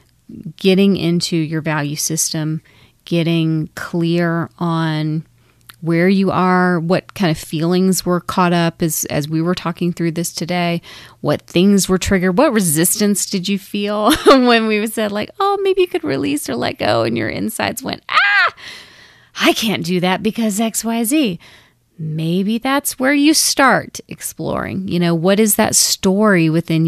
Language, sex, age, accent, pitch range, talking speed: English, female, 30-49, American, 160-200 Hz, 165 wpm